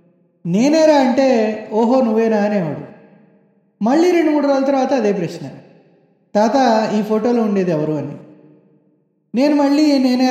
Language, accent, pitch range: English, Indian, 180-245 Hz